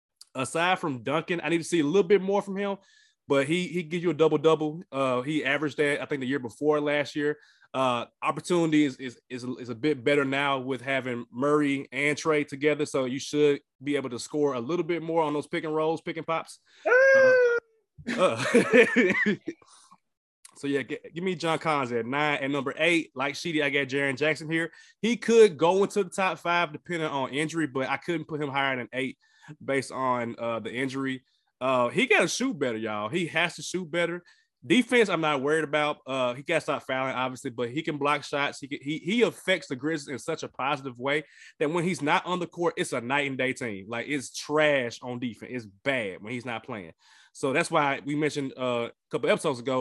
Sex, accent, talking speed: male, American, 215 wpm